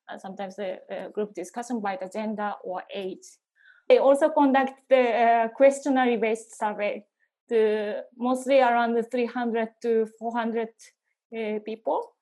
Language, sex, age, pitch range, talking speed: English, female, 20-39, 210-245 Hz, 140 wpm